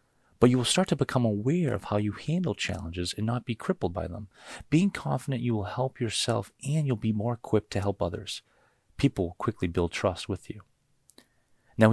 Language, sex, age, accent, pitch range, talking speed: English, male, 30-49, American, 85-115 Hz, 200 wpm